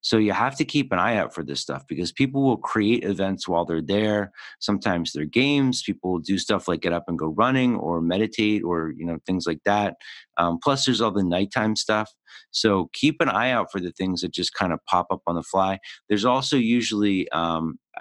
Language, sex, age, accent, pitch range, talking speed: English, male, 50-69, American, 90-115 Hz, 225 wpm